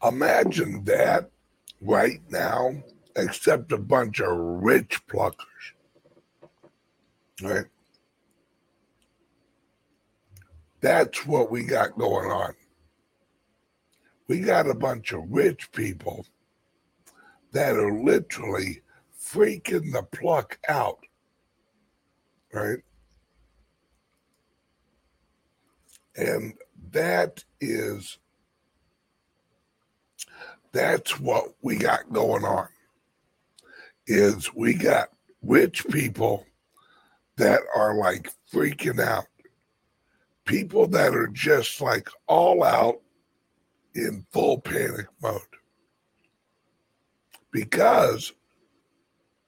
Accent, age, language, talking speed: American, 60-79, English, 75 wpm